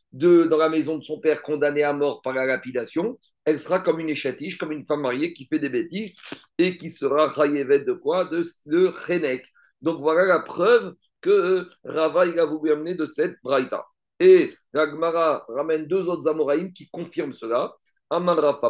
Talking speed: 185 wpm